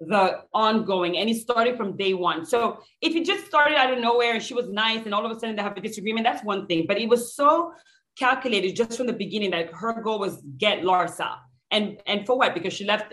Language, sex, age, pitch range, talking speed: English, female, 30-49, 190-245 Hz, 245 wpm